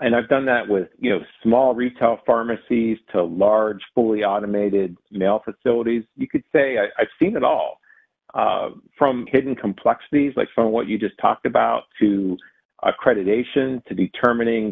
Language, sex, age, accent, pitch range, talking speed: English, male, 50-69, American, 105-145 Hz, 165 wpm